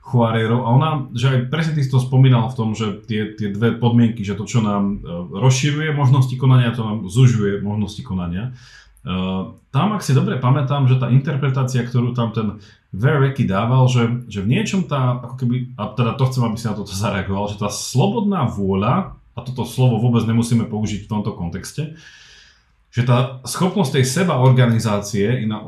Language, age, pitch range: Slovak, 30-49, 100-130 Hz